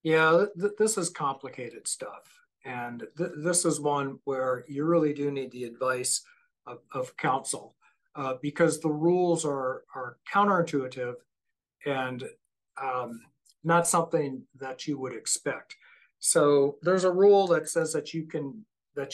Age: 50-69